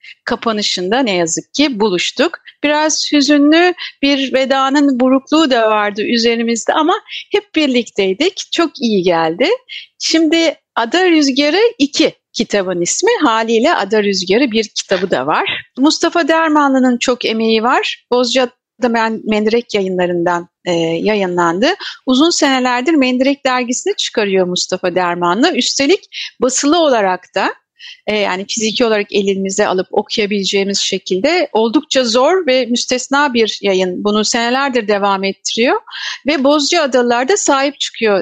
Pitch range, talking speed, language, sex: 210-300 Hz, 115 wpm, Turkish, female